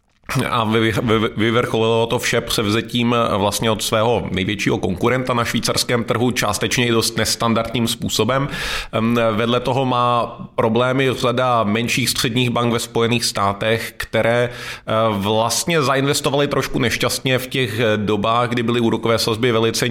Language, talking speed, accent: Czech, 125 wpm, native